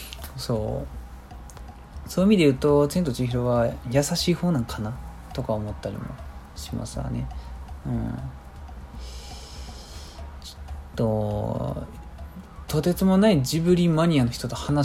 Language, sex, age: Japanese, male, 20-39